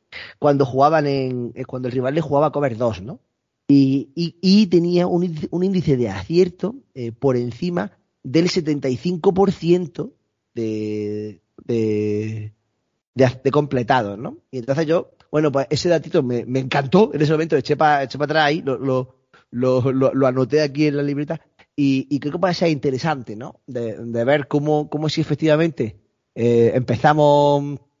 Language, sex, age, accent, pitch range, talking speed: Spanish, male, 30-49, Spanish, 125-155 Hz, 165 wpm